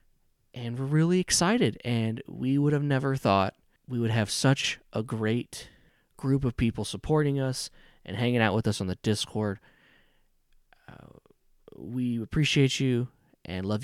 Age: 20-39